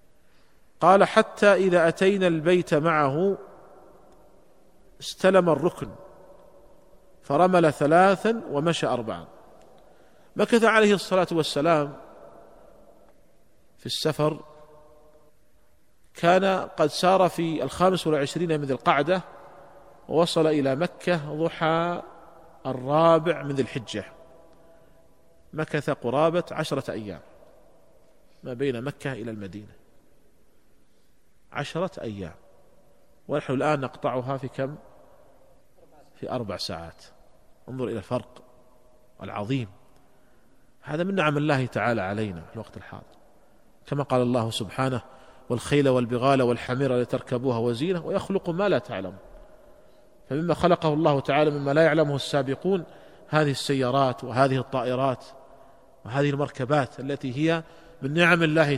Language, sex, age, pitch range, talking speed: Arabic, male, 40-59, 130-170 Hz, 100 wpm